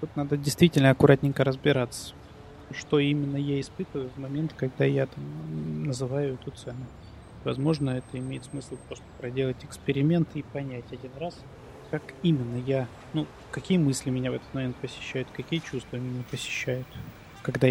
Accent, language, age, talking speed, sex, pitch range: native, Russian, 20-39, 150 wpm, male, 125-145 Hz